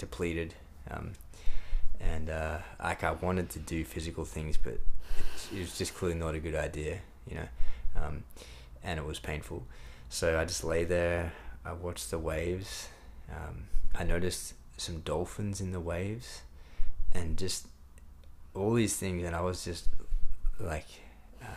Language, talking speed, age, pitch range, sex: English, 155 wpm, 20-39, 70-90 Hz, male